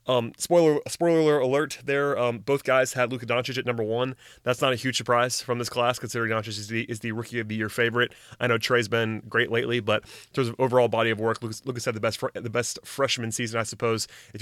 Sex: male